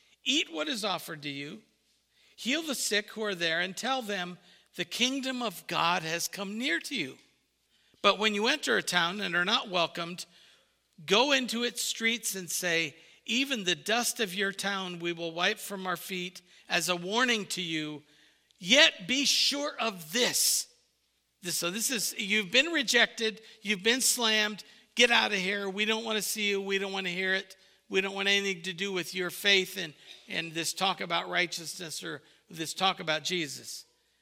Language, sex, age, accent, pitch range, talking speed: English, male, 50-69, American, 165-215 Hz, 190 wpm